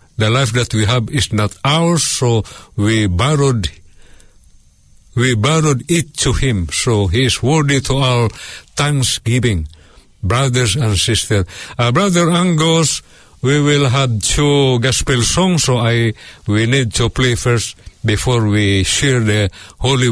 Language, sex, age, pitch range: Filipino, male, 60-79, 95-135 Hz